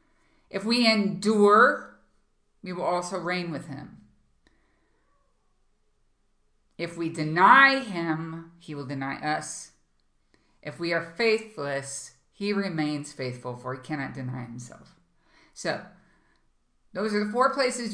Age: 50-69